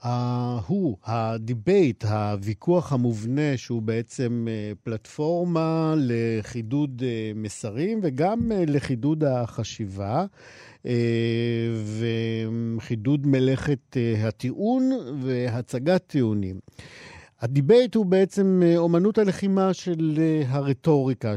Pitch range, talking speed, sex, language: 110-150 Hz, 70 wpm, male, Hebrew